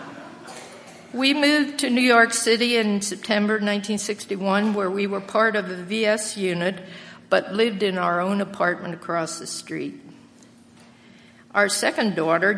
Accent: American